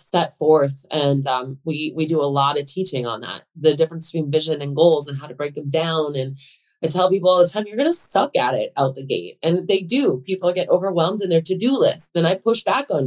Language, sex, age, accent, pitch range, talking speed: English, female, 20-39, American, 155-195 Hz, 255 wpm